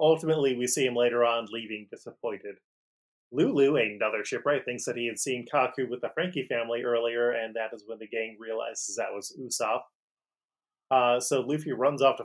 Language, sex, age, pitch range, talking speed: English, male, 20-39, 115-135 Hz, 185 wpm